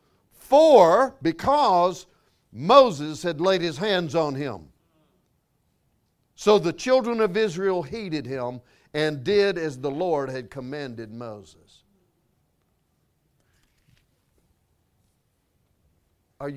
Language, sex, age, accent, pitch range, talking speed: English, male, 60-79, American, 160-235 Hz, 90 wpm